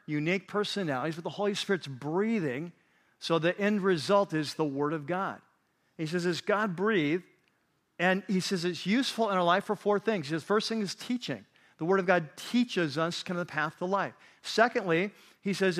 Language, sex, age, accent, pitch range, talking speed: English, male, 40-59, American, 165-205 Hz, 205 wpm